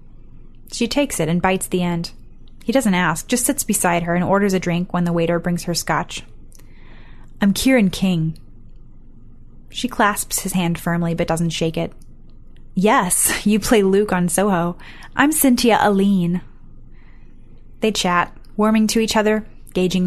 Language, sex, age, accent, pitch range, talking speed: English, female, 10-29, American, 175-210 Hz, 155 wpm